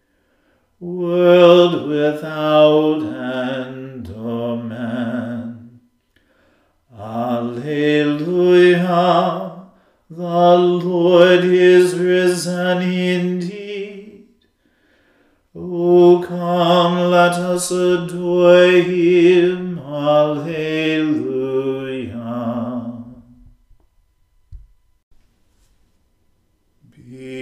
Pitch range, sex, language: 135-175 Hz, male, English